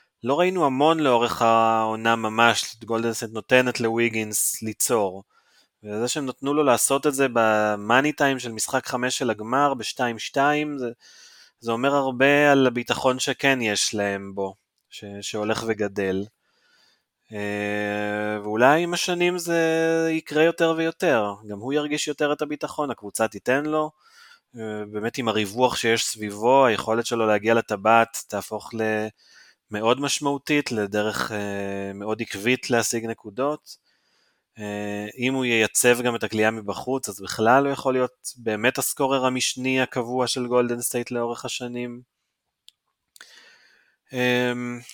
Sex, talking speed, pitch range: male, 130 wpm, 105-135 Hz